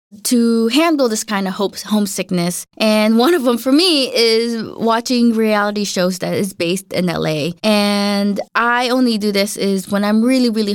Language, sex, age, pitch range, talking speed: English, female, 20-39, 200-245 Hz, 180 wpm